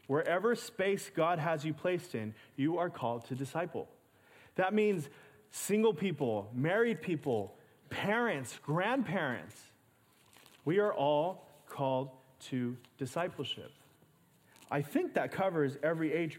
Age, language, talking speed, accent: 30-49, English, 115 wpm, American